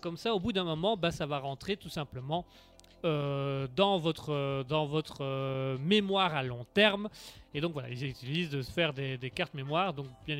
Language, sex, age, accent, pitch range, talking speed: French, male, 30-49, French, 150-200 Hz, 215 wpm